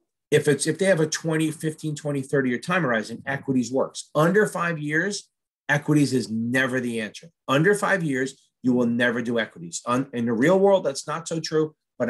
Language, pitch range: English, 125-160 Hz